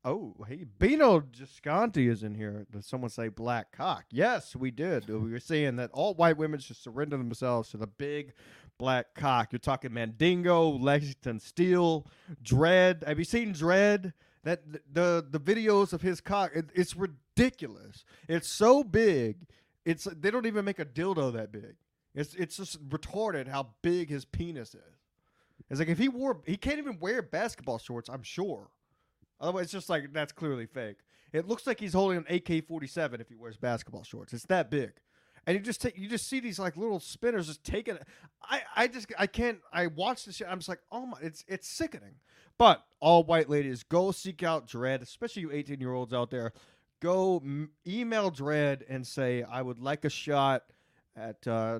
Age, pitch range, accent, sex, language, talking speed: 30-49, 125-180 Hz, American, male, English, 190 wpm